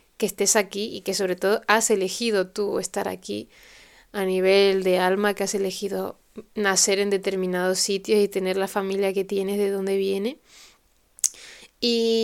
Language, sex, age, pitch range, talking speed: Spanish, female, 20-39, 195-220 Hz, 160 wpm